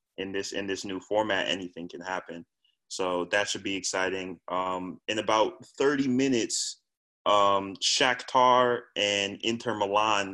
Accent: American